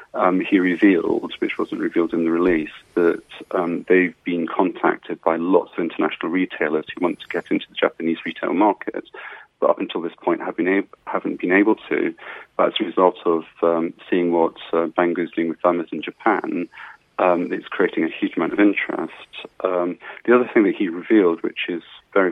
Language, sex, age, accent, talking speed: English, male, 30-49, British, 200 wpm